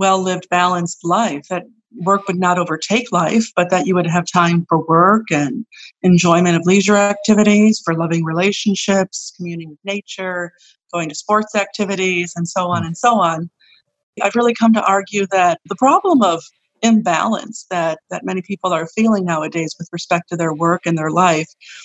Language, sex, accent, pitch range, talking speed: English, female, American, 175-225 Hz, 175 wpm